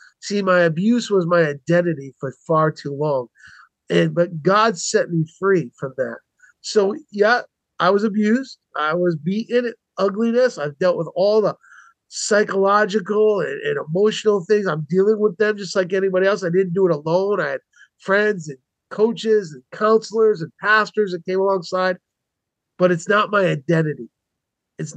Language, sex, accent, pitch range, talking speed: English, male, American, 170-215 Hz, 165 wpm